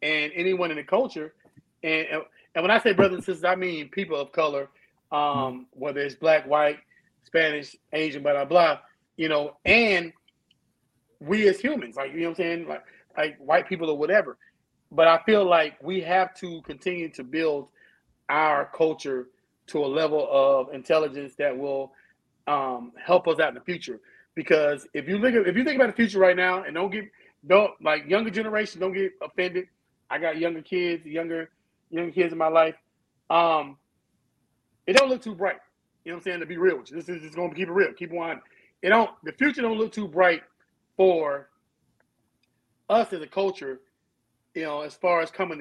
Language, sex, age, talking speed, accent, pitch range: English, male, 30-49, 195 wpm, American, 145-185 Hz